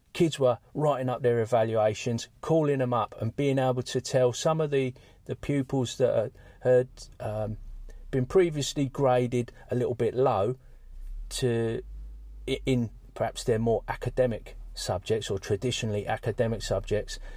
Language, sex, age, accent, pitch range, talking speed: English, male, 40-59, British, 105-130 Hz, 140 wpm